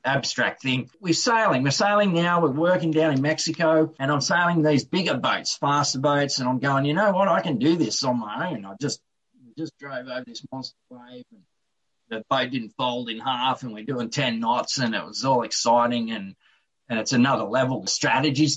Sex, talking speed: male, 210 wpm